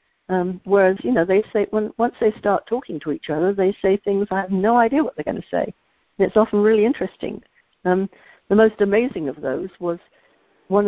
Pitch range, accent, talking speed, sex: 180-220 Hz, British, 215 wpm, female